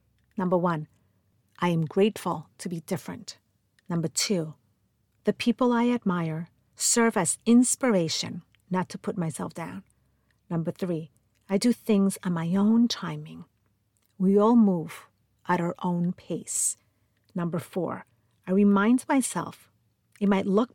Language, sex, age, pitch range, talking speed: English, female, 50-69, 130-200 Hz, 135 wpm